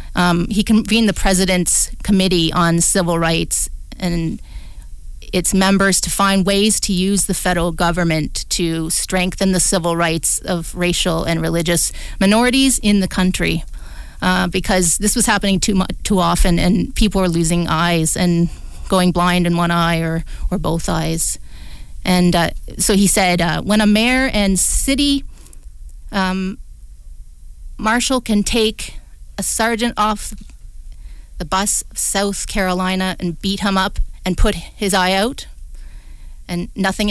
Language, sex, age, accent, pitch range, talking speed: English, female, 30-49, American, 170-200 Hz, 145 wpm